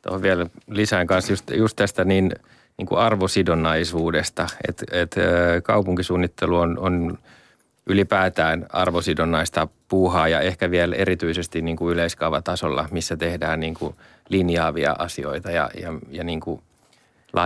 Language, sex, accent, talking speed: Finnish, male, native, 115 wpm